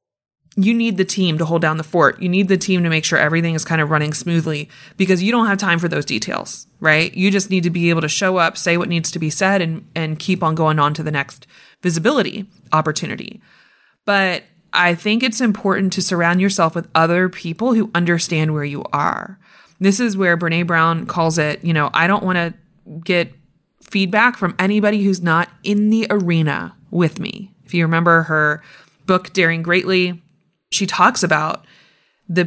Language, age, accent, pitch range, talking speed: English, 20-39, American, 165-200 Hz, 200 wpm